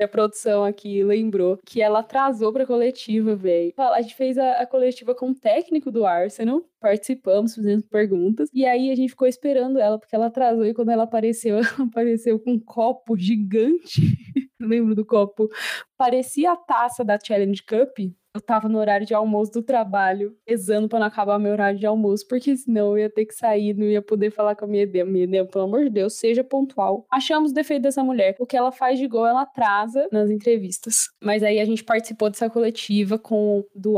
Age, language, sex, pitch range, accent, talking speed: 10-29, Portuguese, female, 210-250 Hz, Brazilian, 205 wpm